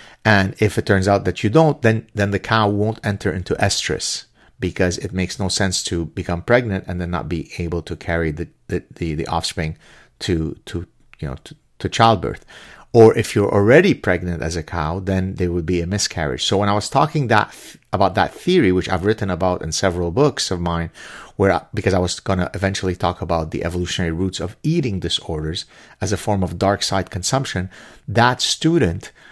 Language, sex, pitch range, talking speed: English, male, 85-110 Hz, 205 wpm